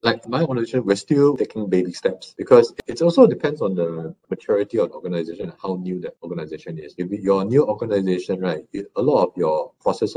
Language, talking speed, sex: English, 205 wpm, male